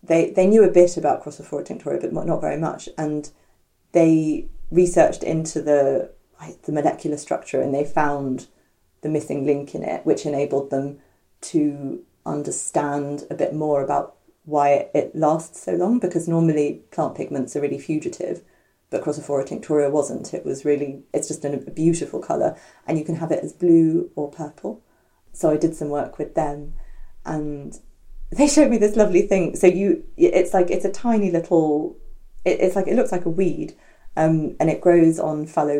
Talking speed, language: 180 wpm, English